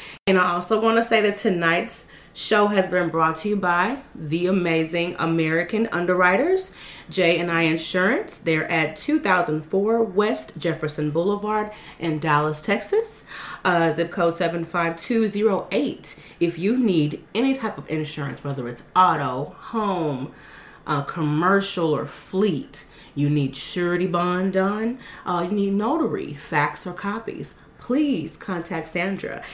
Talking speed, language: 130 wpm, English